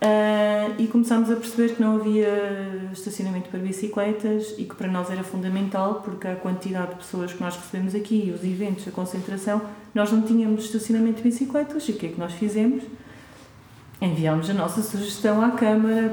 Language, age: Portuguese, 40-59